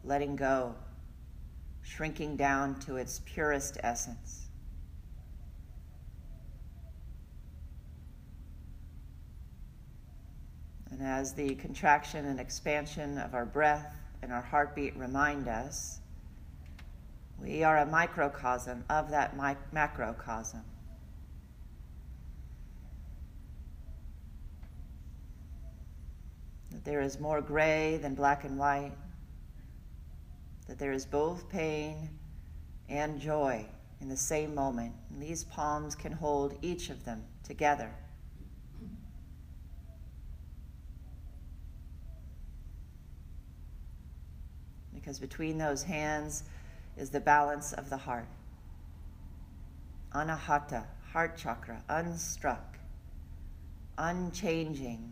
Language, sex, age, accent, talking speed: English, female, 40-59, American, 80 wpm